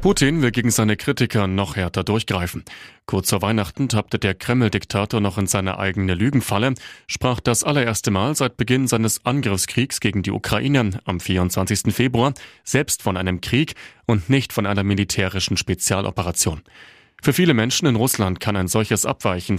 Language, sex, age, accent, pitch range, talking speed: German, male, 30-49, German, 95-125 Hz, 160 wpm